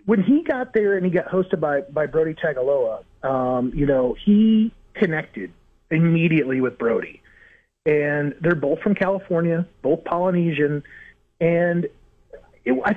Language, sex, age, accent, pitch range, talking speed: English, male, 30-49, American, 145-190 Hz, 135 wpm